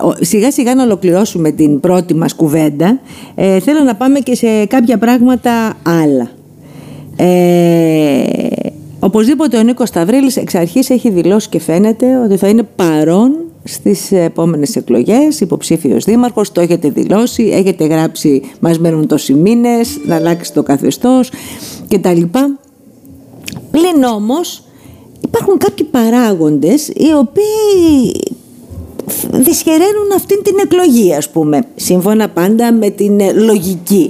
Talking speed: 120 wpm